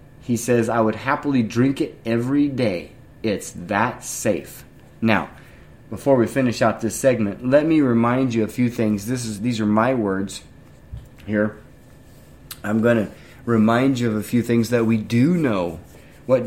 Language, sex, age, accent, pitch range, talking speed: English, male, 30-49, American, 110-145 Hz, 170 wpm